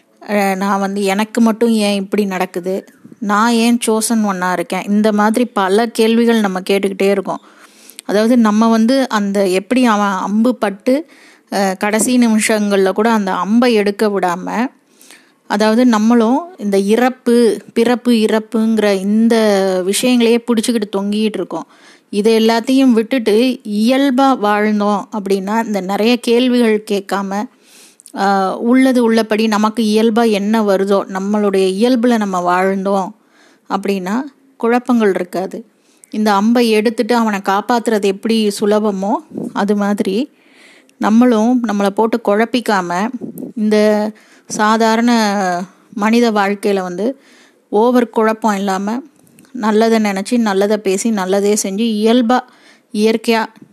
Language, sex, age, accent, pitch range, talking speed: Tamil, female, 20-39, native, 200-240 Hz, 105 wpm